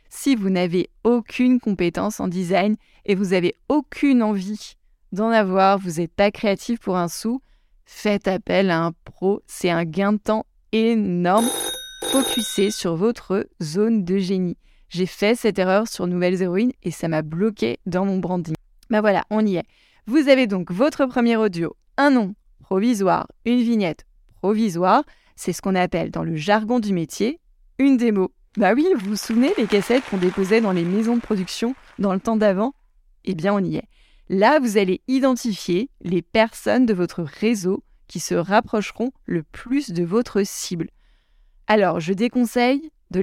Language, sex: French, female